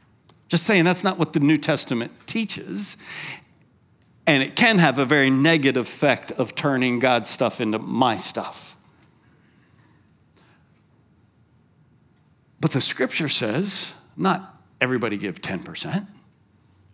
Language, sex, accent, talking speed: English, male, American, 115 wpm